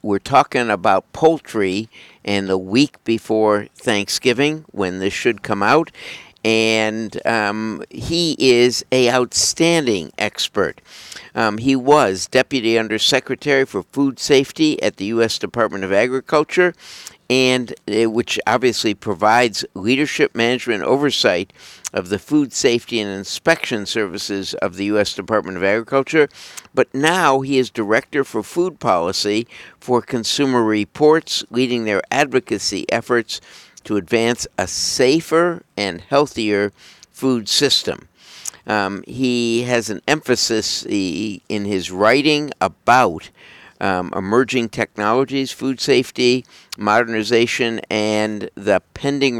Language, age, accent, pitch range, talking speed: English, 60-79, American, 105-135 Hz, 115 wpm